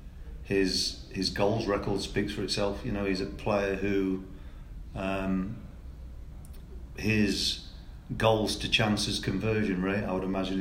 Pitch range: 90-110 Hz